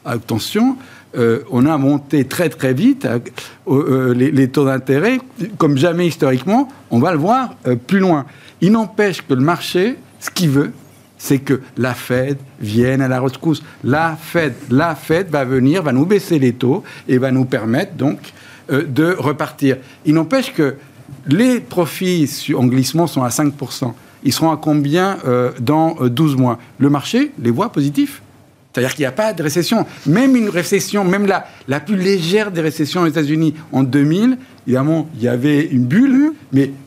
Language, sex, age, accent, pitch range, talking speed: French, male, 60-79, French, 130-175 Hz, 180 wpm